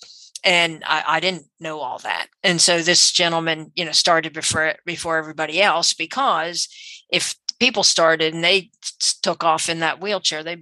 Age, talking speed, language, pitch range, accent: 50-69, 175 wpm, English, 165-210 Hz, American